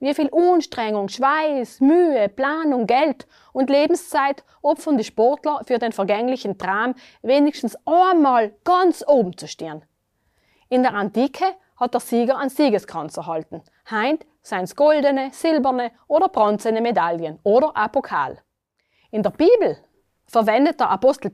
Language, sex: German, female